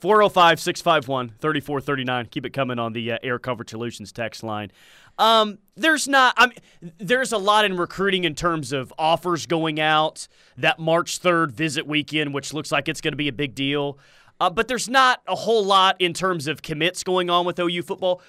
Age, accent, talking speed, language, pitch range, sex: 30-49, American, 195 wpm, English, 140-180 Hz, male